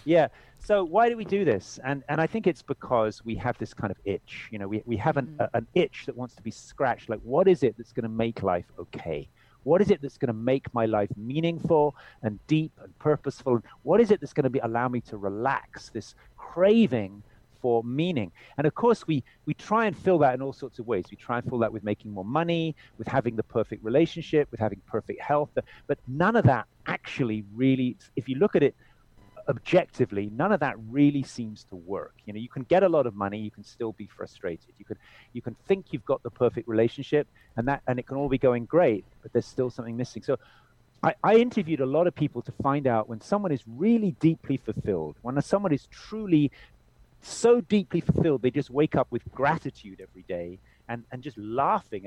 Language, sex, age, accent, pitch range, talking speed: English, male, 40-59, British, 115-155 Hz, 230 wpm